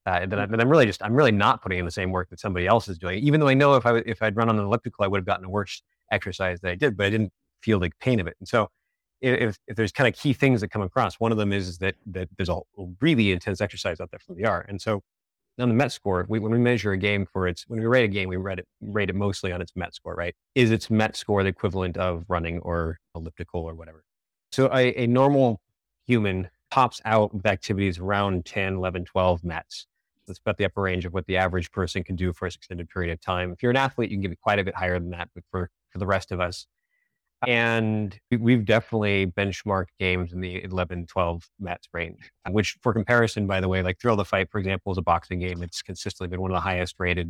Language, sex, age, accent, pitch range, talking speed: English, male, 30-49, American, 90-110 Hz, 265 wpm